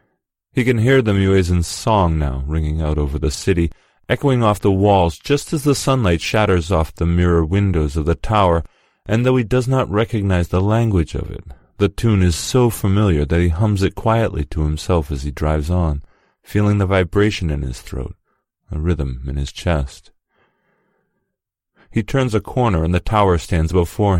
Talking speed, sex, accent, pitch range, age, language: 185 wpm, male, American, 80-105 Hz, 40-59, English